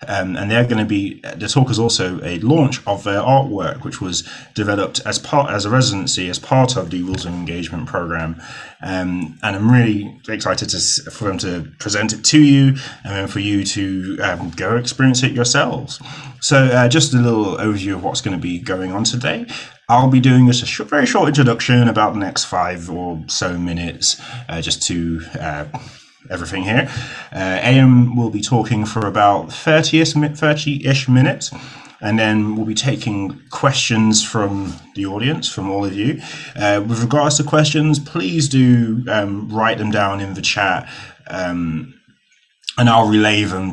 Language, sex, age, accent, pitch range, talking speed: English, male, 30-49, British, 95-130 Hz, 185 wpm